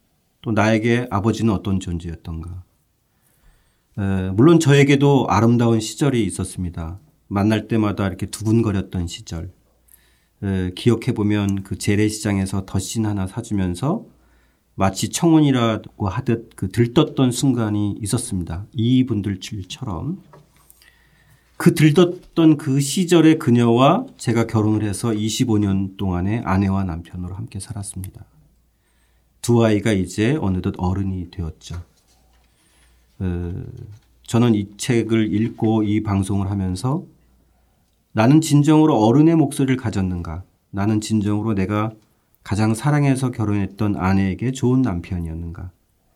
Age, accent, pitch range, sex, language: 40-59, native, 95-115 Hz, male, Korean